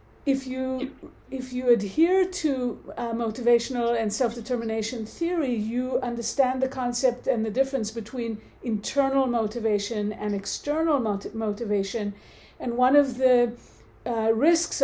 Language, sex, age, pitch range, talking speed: English, female, 50-69, 210-255 Hz, 125 wpm